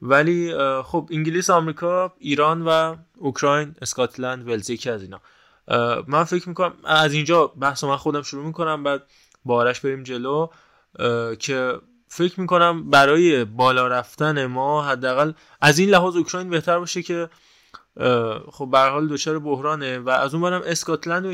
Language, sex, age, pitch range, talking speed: Persian, male, 20-39, 125-160 Hz, 140 wpm